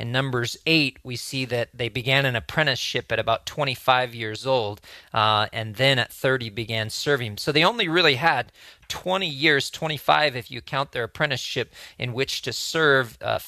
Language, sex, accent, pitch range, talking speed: English, male, American, 115-145 Hz, 180 wpm